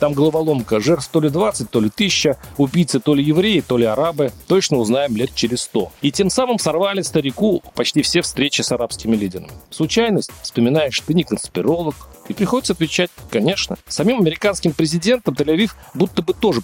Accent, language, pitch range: native, Russian, 120-175 Hz